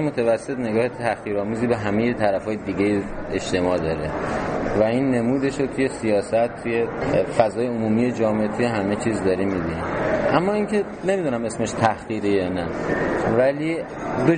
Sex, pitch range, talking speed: male, 95-125 Hz, 140 wpm